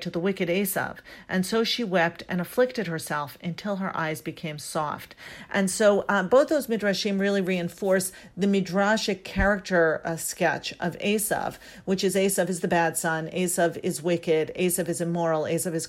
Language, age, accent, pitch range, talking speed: English, 40-59, American, 165-200 Hz, 175 wpm